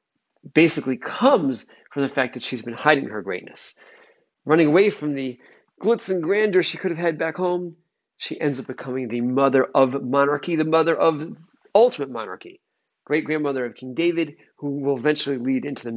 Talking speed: 175 wpm